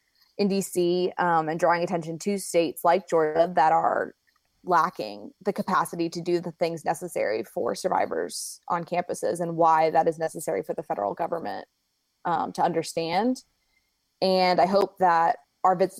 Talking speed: 155 wpm